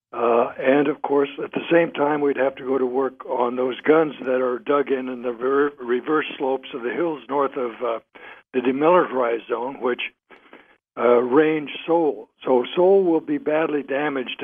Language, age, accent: English, 60-79, American